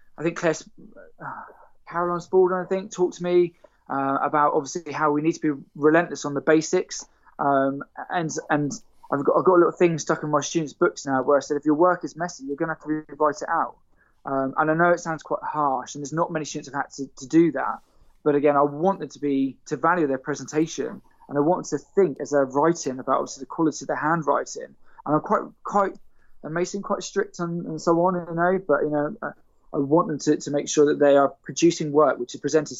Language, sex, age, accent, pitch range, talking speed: English, male, 20-39, British, 145-175 Hz, 250 wpm